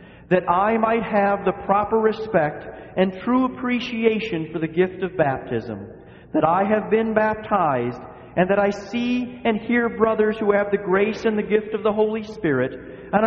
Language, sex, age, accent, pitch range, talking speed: English, male, 40-59, American, 160-220 Hz, 175 wpm